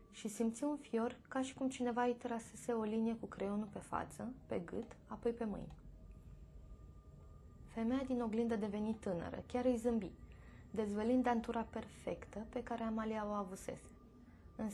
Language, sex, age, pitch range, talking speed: Romanian, female, 20-39, 190-230 Hz, 155 wpm